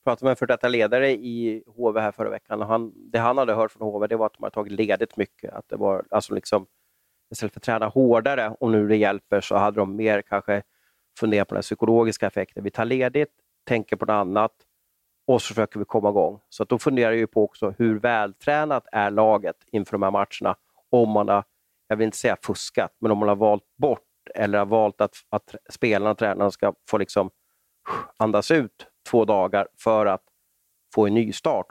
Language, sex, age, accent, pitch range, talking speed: Swedish, male, 30-49, native, 105-120 Hz, 215 wpm